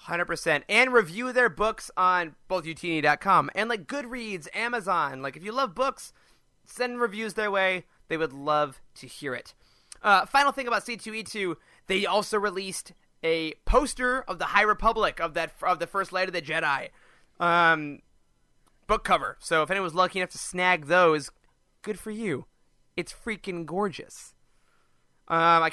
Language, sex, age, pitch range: English, male, 30-49, 170-220 Hz